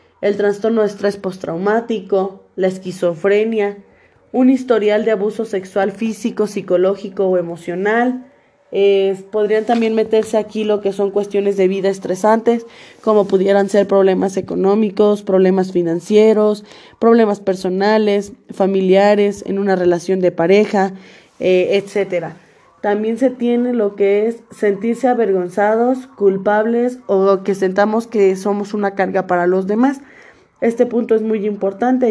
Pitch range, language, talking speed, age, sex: 190-225 Hz, Spanish, 130 wpm, 20-39, female